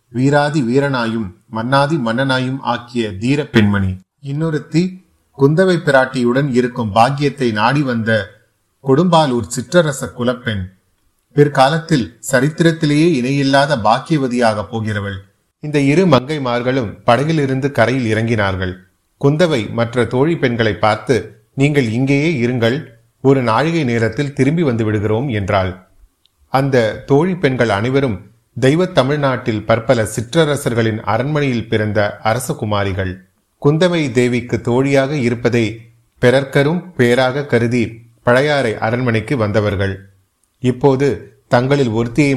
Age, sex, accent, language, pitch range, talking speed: 30-49, male, native, Tamil, 110-140 Hz, 85 wpm